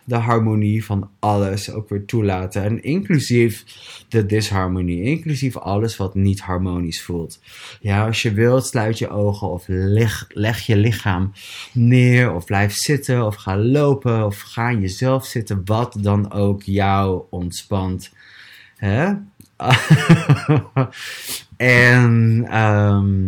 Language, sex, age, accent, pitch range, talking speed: Dutch, male, 20-39, Dutch, 95-115 Hz, 120 wpm